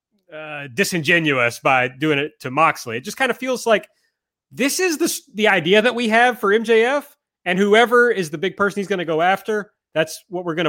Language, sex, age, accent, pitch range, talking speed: English, male, 30-49, American, 145-205 Hz, 215 wpm